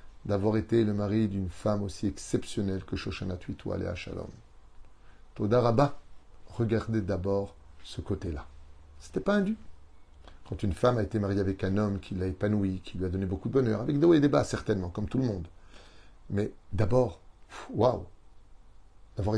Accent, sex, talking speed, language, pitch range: French, male, 170 wpm, French, 95-115 Hz